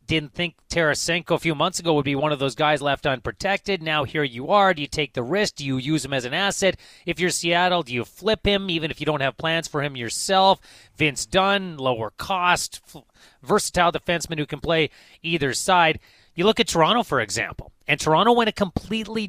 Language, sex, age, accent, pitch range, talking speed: English, male, 30-49, American, 145-185 Hz, 215 wpm